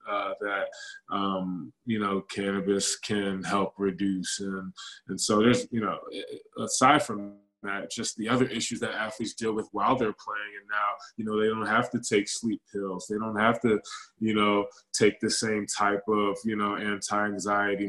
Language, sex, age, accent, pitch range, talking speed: English, male, 20-39, American, 100-110 Hz, 180 wpm